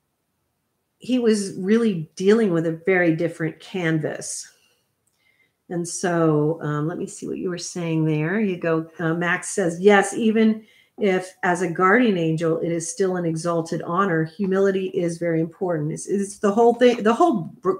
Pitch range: 170-215 Hz